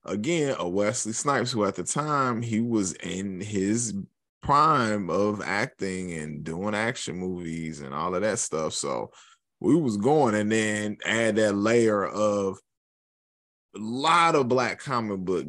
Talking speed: 155 wpm